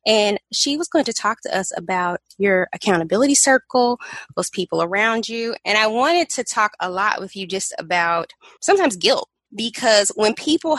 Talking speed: 180 wpm